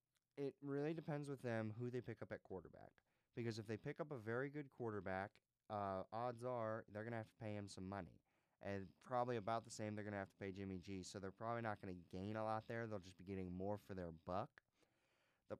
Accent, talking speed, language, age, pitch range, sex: American, 245 wpm, English, 20-39, 95-115 Hz, male